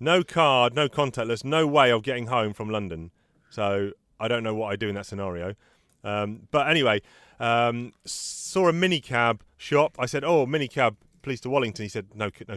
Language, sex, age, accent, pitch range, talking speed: English, male, 30-49, British, 105-140 Hz, 190 wpm